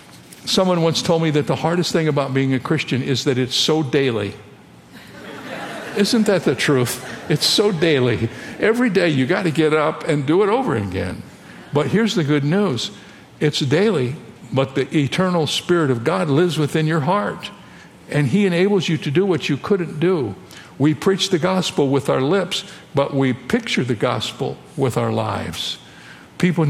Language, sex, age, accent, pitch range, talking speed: English, male, 60-79, American, 120-175 Hz, 180 wpm